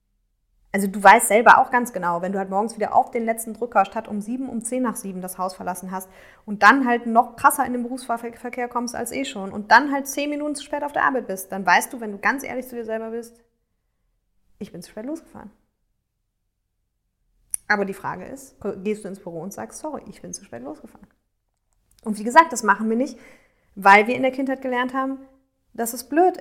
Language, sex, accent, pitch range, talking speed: German, female, German, 195-250 Hz, 225 wpm